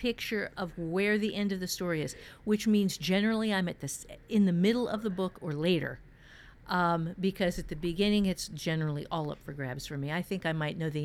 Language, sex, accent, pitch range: English, female, American, 155-205 Hz